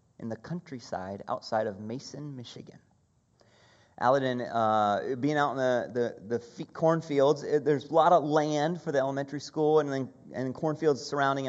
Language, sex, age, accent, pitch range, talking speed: English, male, 30-49, American, 130-165 Hz, 155 wpm